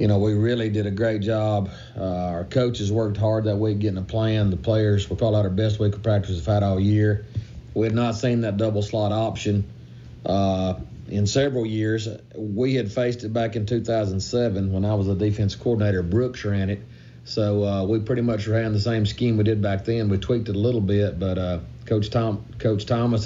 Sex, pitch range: male, 95-110 Hz